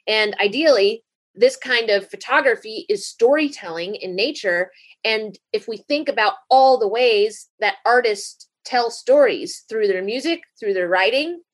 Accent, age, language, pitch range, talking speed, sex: American, 30-49, English, 200-335 Hz, 145 wpm, female